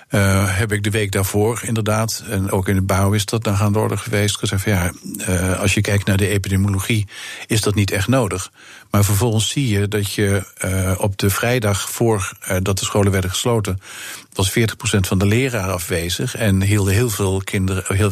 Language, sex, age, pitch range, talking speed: Dutch, male, 50-69, 95-110 Hz, 205 wpm